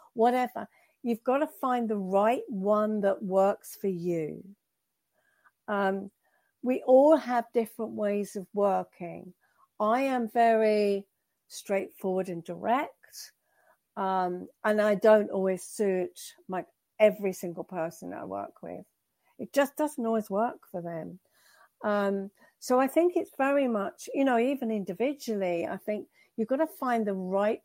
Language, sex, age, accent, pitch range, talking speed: English, female, 50-69, British, 195-250 Hz, 140 wpm